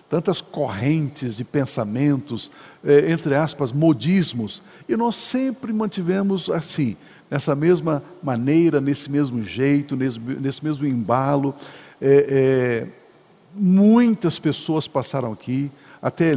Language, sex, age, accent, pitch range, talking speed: Portuguese, male, 60-79, Brazilian, 140-185 Hz, 110 wpm